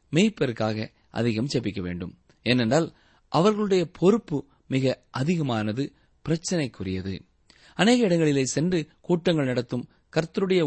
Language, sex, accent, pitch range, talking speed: Tamil, male, native, 110-170 Hz, 90 wpm